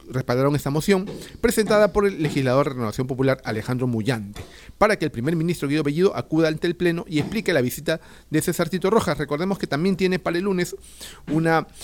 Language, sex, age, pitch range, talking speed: Spanish, male, 40-59, 130-175 Hz, 200 wpm